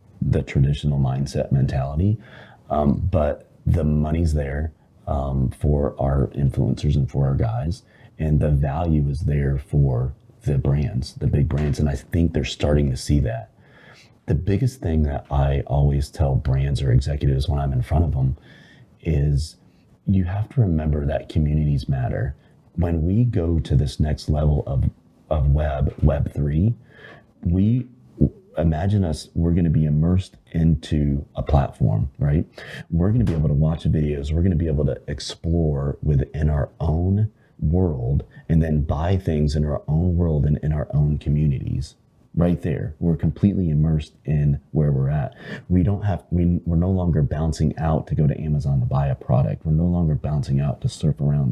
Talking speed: 175 wpm